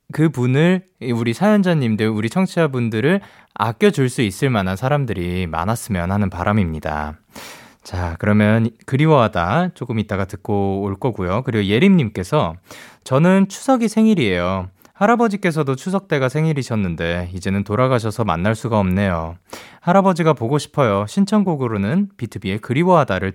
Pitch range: 100-160 Hz